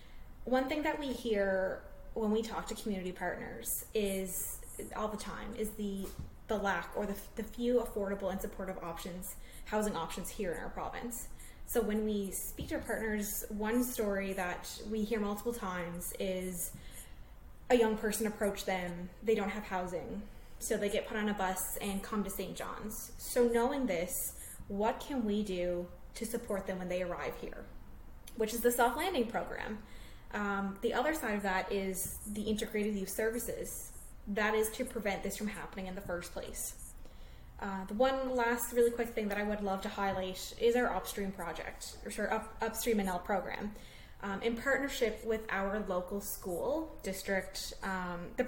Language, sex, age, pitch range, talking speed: English, female, 20-39, 190-230 Hz, 175 wpm